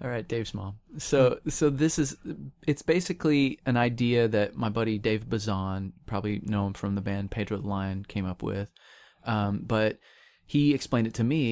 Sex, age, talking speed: male, 30-49, 180 wpm